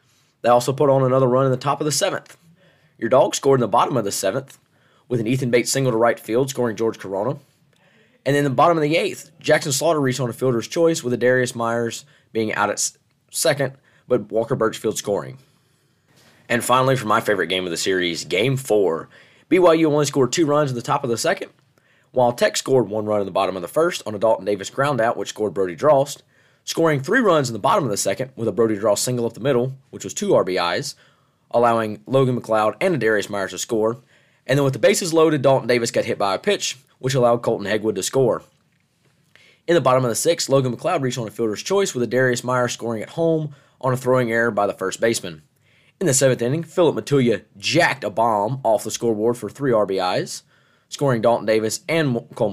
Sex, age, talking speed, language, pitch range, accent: male, 20-39, 225 wpm, English, 115-145 Hz, American